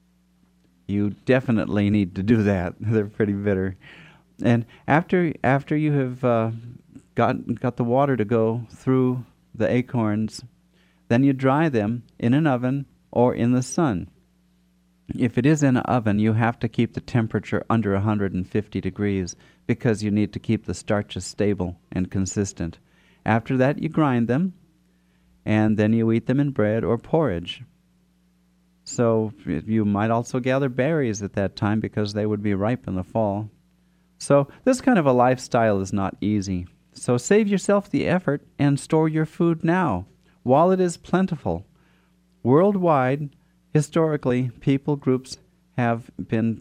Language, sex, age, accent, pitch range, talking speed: English, male, 50-69, American, 100-135 Hz, 155 wpm